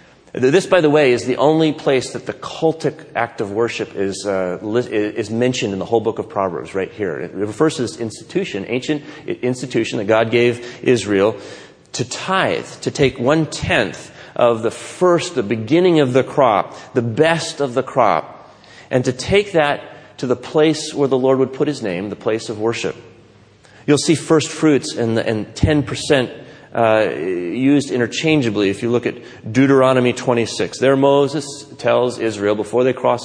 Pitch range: 115-155 Hz